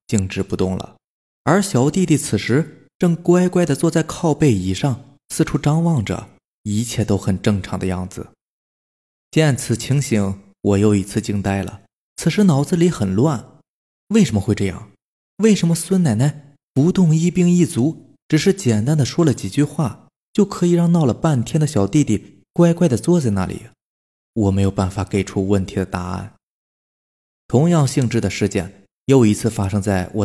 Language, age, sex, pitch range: Chinese, 20-39, male, 100-150 Hz